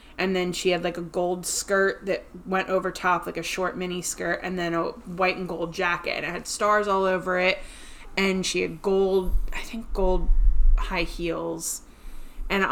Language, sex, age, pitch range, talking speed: English, female, 20-39, 170-200 Hz, 195 wpm